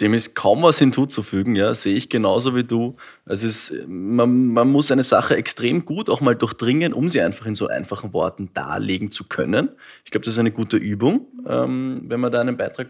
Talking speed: 220 wpm